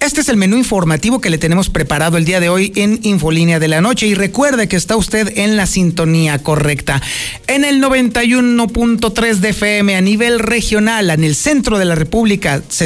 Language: Spanish